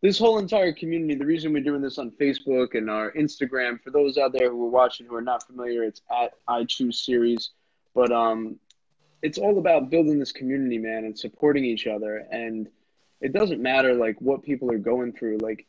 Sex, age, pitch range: male, 20-39, 115-140 Hz